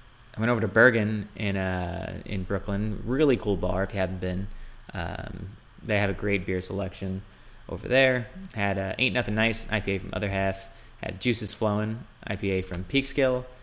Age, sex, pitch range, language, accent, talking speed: 20-39, male, 95-115 Hz, English, American, 175 wpm